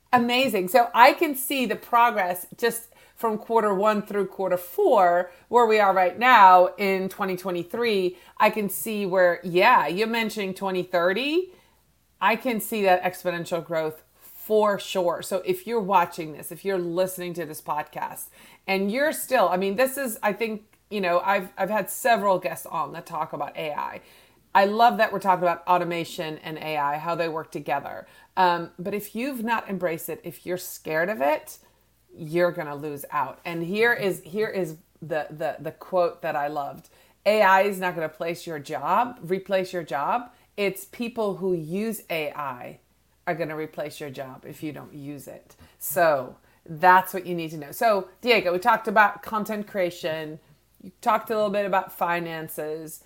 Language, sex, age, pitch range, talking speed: English, female, 30-49, 170-215 Hz, 180 wpm